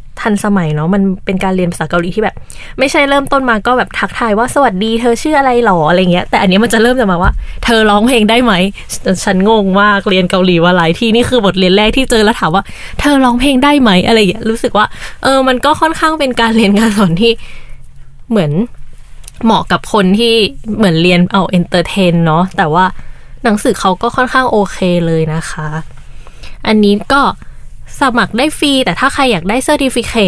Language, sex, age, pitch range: Thai, female, 20-39, 180-235 Hz